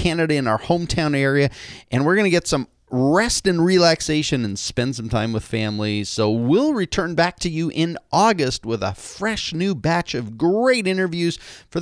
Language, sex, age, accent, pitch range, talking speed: English, male, 30-49, American, 115-175 Hz, 190 wpm